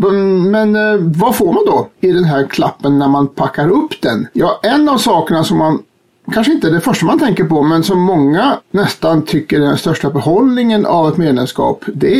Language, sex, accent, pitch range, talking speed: Swedish, male, native, 140-200 Hz, 205 wpm